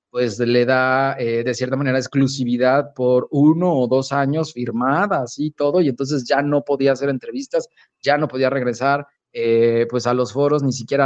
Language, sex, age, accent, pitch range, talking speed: English, male, 30-49, Mexican, 135-175 Hz, 185 wpm